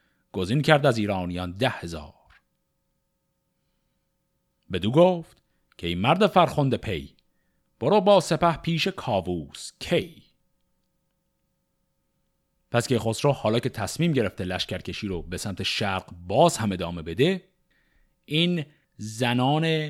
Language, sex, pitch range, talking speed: Persian, male, 105-160 Hz, 110 wpm